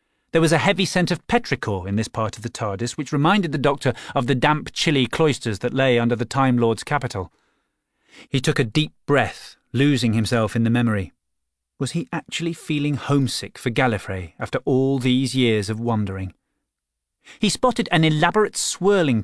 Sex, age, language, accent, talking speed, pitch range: male, 30-49, English, British, 180 wpm, 110-145 Hz